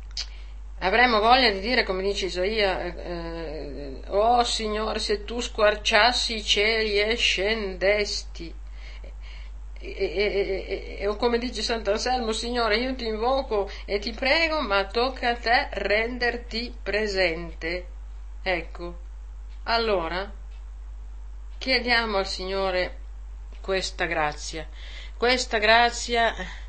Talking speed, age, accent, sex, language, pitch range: 105 wpm, 50-69, native, female, Italian, 140-215 Hz